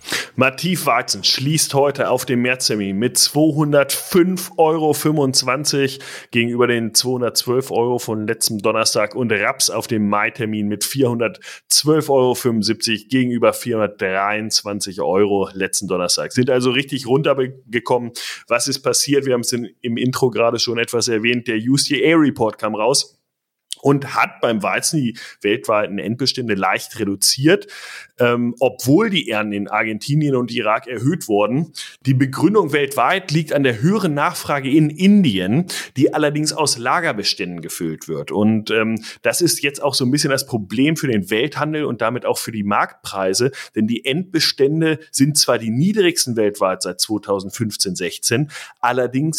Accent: German